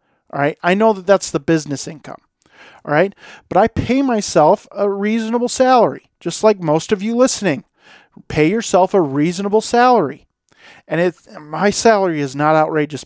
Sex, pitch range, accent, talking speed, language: male, 150-205 Hz, American, 165 wpm, English